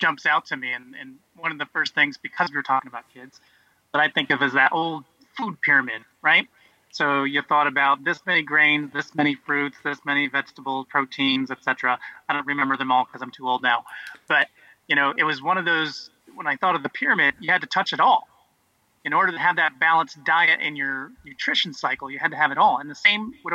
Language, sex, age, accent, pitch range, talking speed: English, male, 30-49, American, 135-170 Hz, 235 wpm